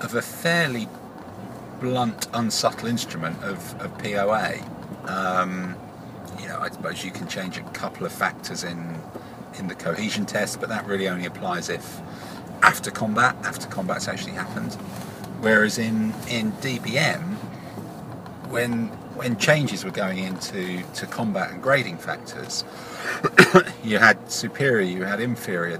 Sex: male